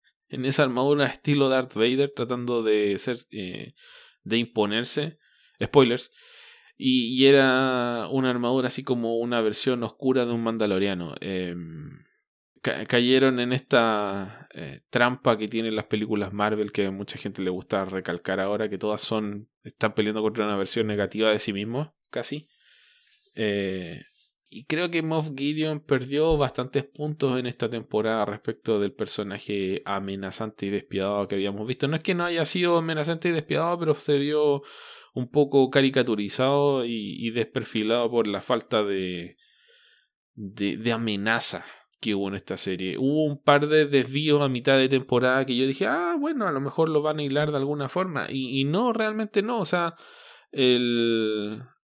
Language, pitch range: English, 105-145 Hz